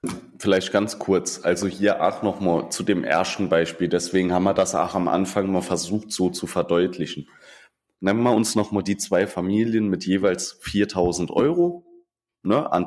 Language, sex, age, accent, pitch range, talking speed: German, male, 20-39, German, 90-110 Hz, 165 wpm